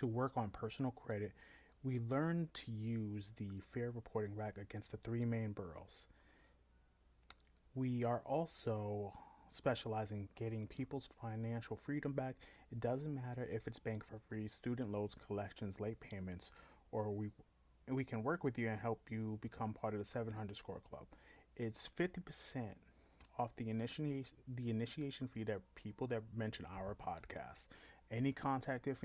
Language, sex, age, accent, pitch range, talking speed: English, male, 30-49, American, 105-130 Hz, 155 wpm